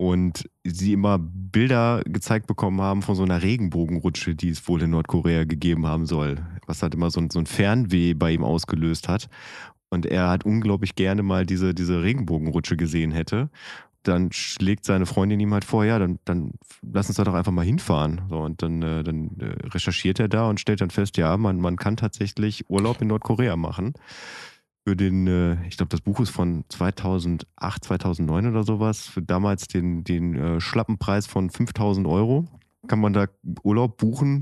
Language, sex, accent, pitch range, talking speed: German, male, German, 90-110 Hz, 180 wpm